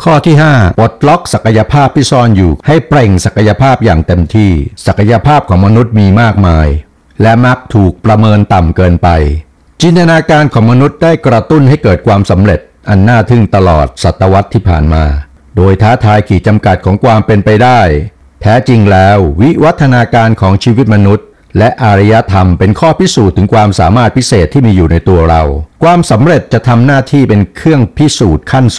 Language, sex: English, male